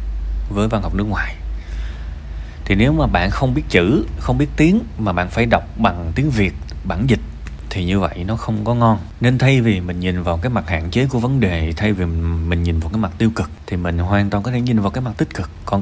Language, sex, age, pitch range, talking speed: Vietnamese, male, 20-39, 85-125 Hz, 250 wpm